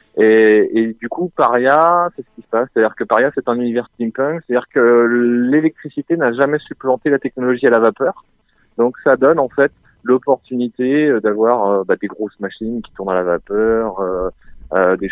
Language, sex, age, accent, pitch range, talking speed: French, male, 30-49, French, 105-130 Hz, 190 wpm